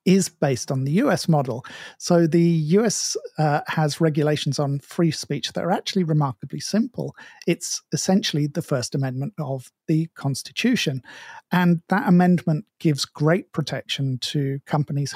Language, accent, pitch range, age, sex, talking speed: English, British, 145-170 Hz, 50-69, male, 145 wpm